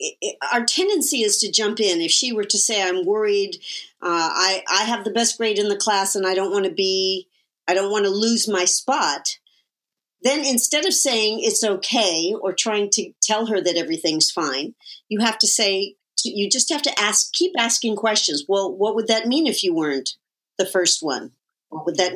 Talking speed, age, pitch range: 205 wpm, 50-69, 185-255 Hz